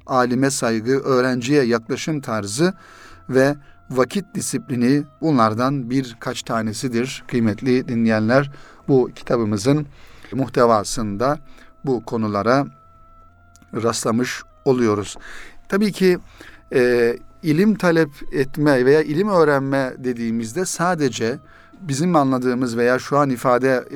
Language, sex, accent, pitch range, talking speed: Turkish, male, native, 120-145 Hz, 95 wpm